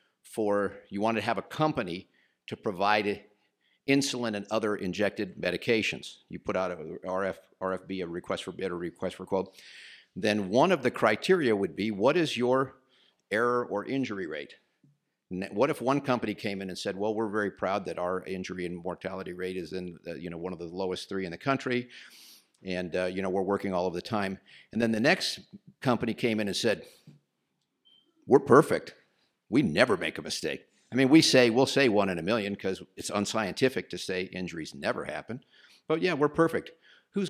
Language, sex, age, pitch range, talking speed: English, male, 50-69, 95-125 Hz, 195 wpm